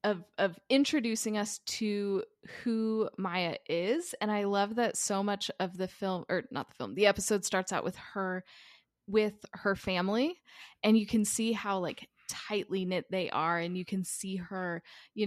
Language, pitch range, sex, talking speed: English, 180-215 Hz, female, 180 wpm